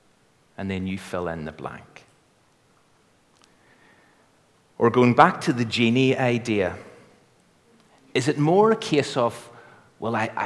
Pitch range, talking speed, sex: 105-150 Hz, 125 wpm, male